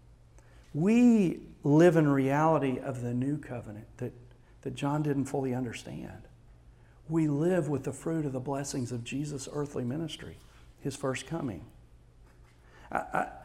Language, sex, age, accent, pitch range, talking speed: English, male, 40-59, American, 120-155 Hz, 135 wpm